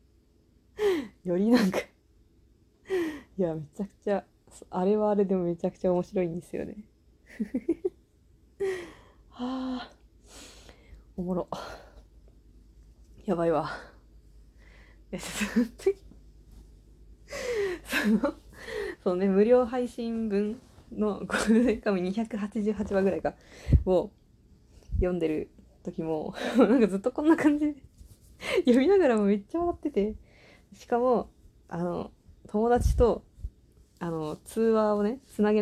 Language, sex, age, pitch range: Japanese, female, 20-39, 185-255 Hz